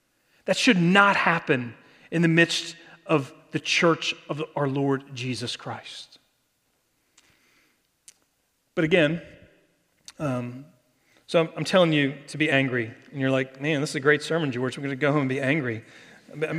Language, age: English, 40-59